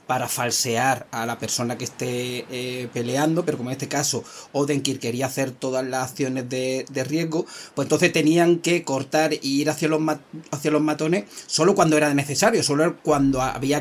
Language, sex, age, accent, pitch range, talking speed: Spanish, male, 30-49, Spanish, 130-155 Hz, 185 wpm